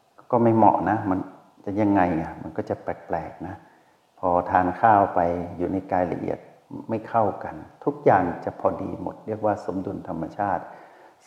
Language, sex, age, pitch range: Thai, male, 60-79, 95-115 Hz